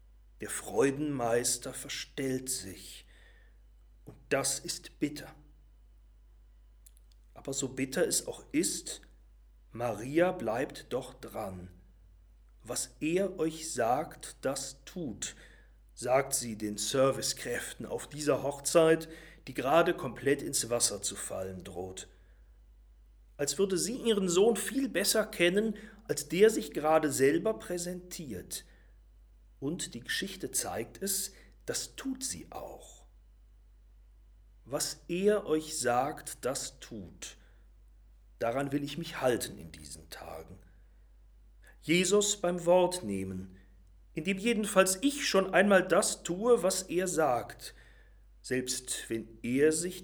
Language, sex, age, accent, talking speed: German, male, 40-59, German, 115 wpm